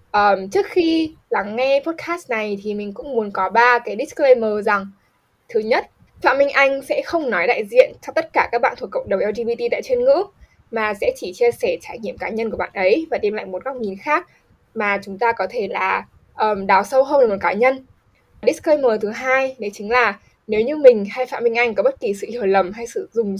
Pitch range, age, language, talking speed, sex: 205-340 Hz, 10-29, Vietnamese, 235 wpm, female